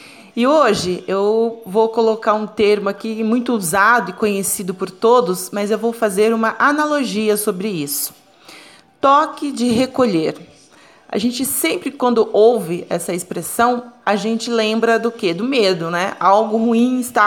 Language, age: Portuguese, 30-49